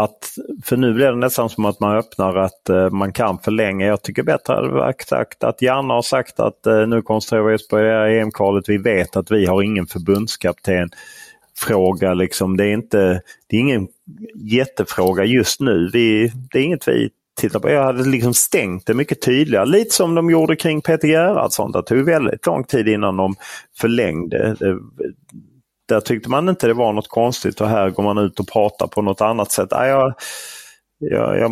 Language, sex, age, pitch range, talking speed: Swedish, male, 30-49, 100-125 Hz, 190 wpm